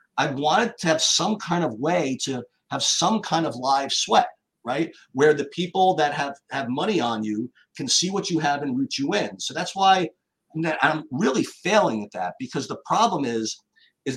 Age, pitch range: 50-69, 130-175 Hz